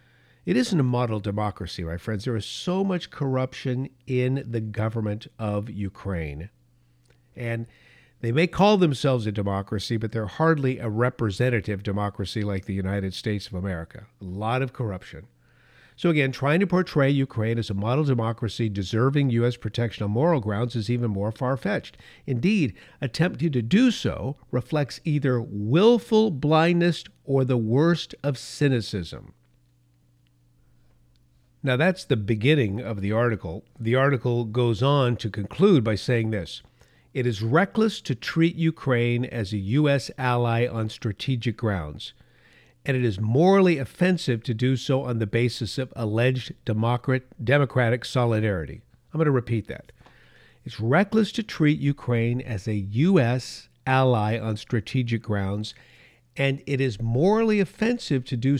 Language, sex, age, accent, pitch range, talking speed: English, male, 50-69, American, 110-140 Hz, 145 wpm